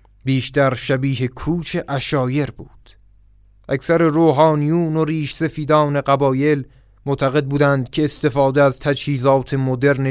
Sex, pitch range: male, 130-150 Hz